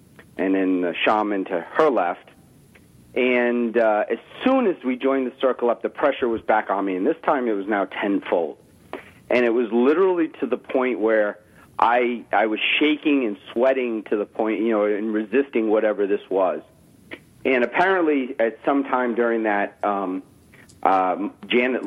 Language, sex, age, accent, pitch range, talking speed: English, male, 40-59, American, 105-130 Hz, 175 wpm